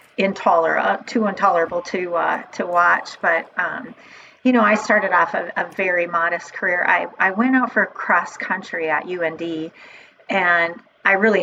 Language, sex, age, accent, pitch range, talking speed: English, female, 40-59, American, 170-215 Hz, 160 wpm